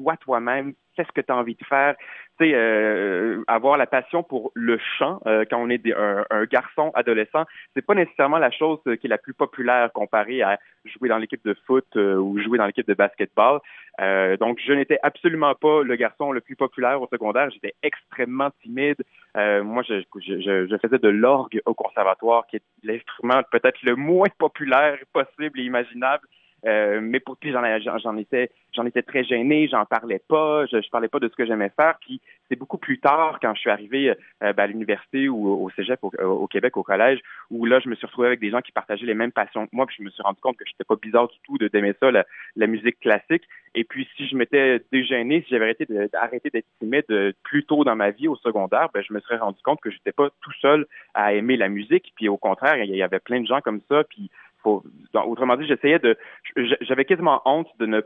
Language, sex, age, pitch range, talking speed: French, male, 30-49, 110-145 Hz, 230 wpm